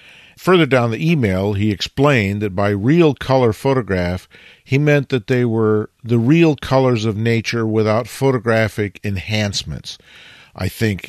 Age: 50-69